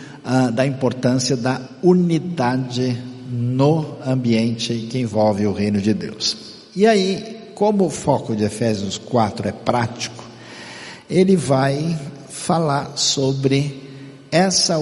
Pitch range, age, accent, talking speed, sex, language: 115-150 Hz, 60-79, Brazilian, 110 wpm, male, Portuguese